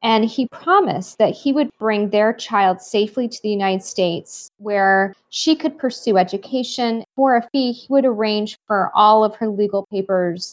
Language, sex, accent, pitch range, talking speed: English, female, American, 200-245 Hz, 175 wpm